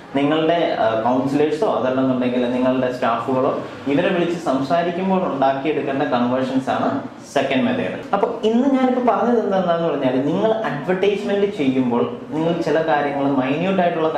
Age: 20-39